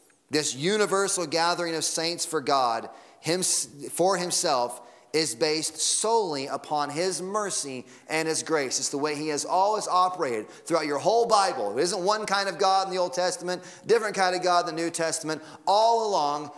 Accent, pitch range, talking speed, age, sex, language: American, 150-185 Hz, 175 wpm, 30-49, male, English